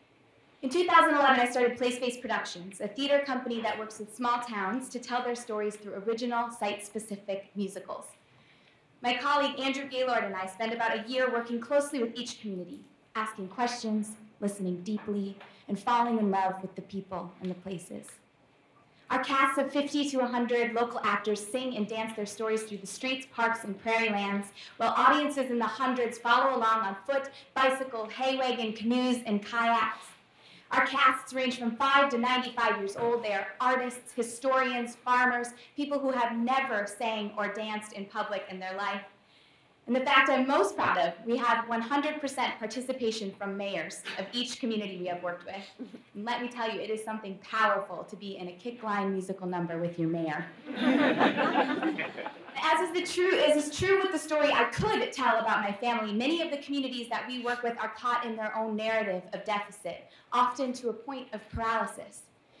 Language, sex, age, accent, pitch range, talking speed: English, female, 20-39, American, 205-255 Hz, 180 wpm